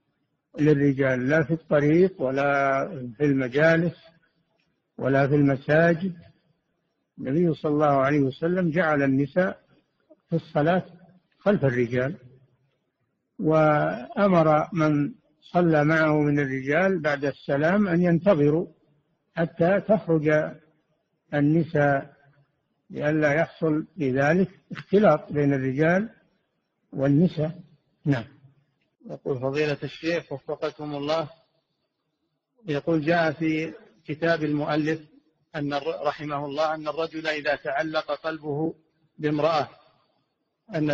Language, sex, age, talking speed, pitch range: Arabic, male, 60-79, 90 wpm, 145-165 Hz